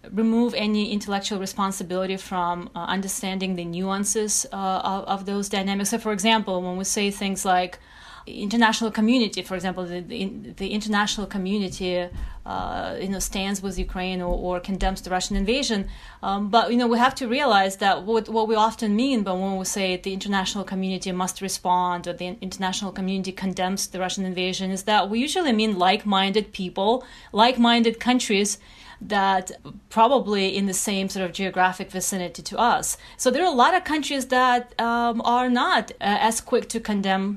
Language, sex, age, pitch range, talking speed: English, female, 30-49, 190-225 Hz, 175 wpm